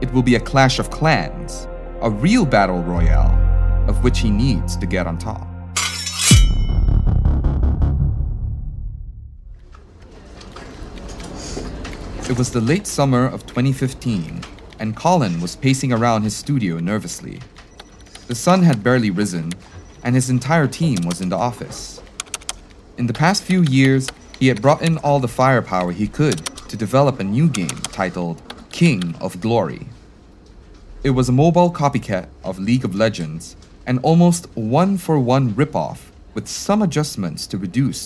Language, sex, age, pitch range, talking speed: English, male, 30-49, 90-135 Hz, 140 wpm